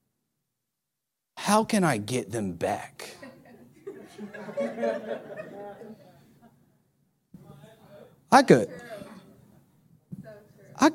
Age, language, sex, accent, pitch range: 40-59, English, male, American, 165-230 Hz